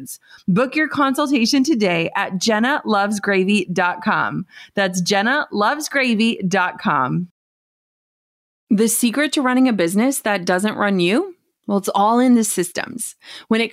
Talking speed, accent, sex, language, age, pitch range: 115 wpm, American, female, English, 30-49, 200-270 Hz